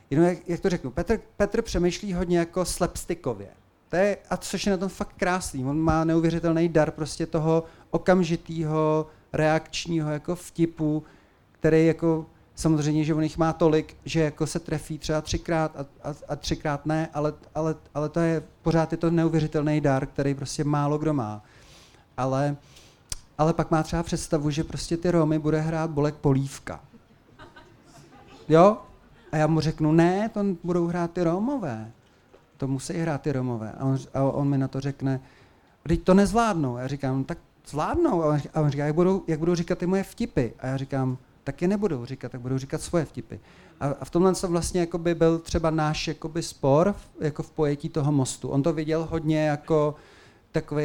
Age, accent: 40-59, native